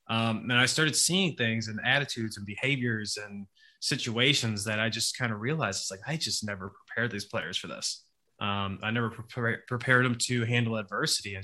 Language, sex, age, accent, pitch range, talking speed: English, male, 20-39, American, 110-125 Hz, 195 wpm